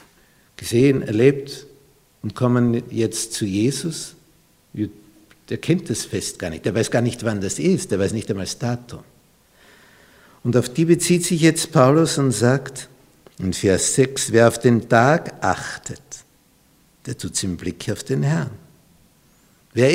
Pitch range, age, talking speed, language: 100-165 Hz, 60-79, 155 wpm, German